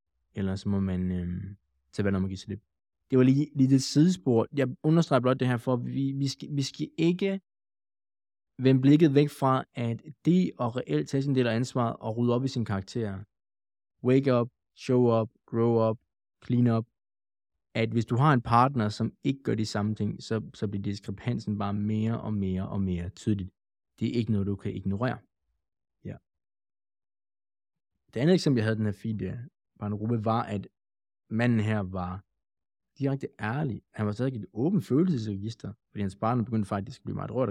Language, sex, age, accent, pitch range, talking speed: Danish, male, 20-39, native, 100-130 Hz, 190 wpm